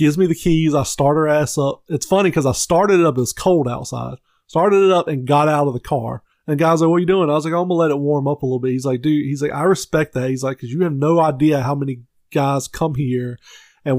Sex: male